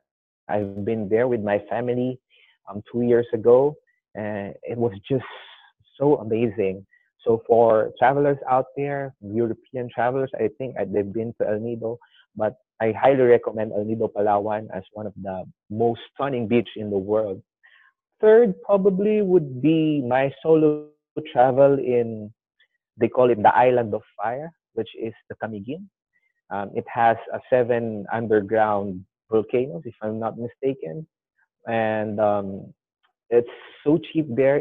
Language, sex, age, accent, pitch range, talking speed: English, male, 30-49, Filipino, 105-130 Hz, 145 wpm